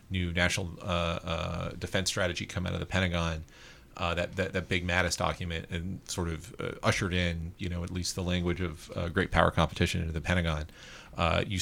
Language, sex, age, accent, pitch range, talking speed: English, male, 30-49, American, 85-95 Hz, 205 wpm